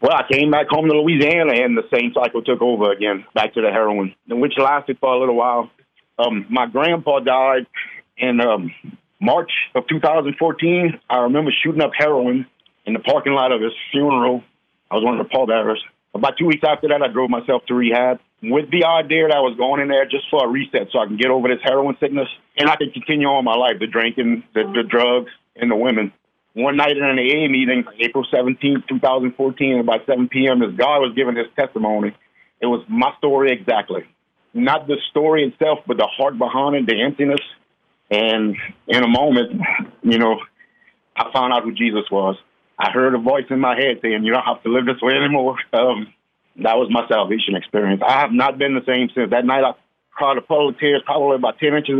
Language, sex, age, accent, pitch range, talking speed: English, male, 50-69, American, 120-145 Hz, 210 wpm